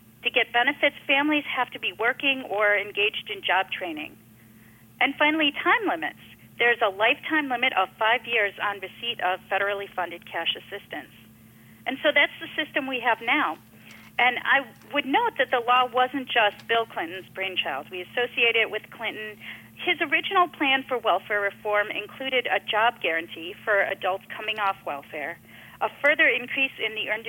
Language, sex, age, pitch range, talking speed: English, female, 40-59, 200-270 Hz, 170 wpm